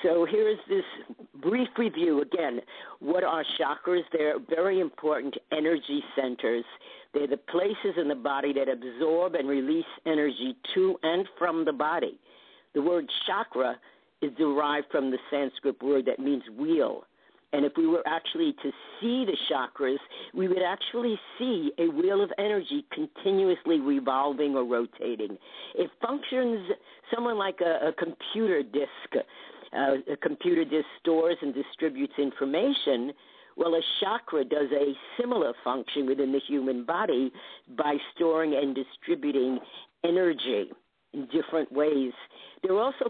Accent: American